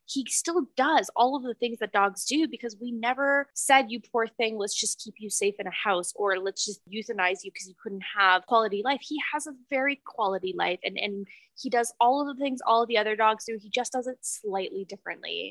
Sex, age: female, 20-39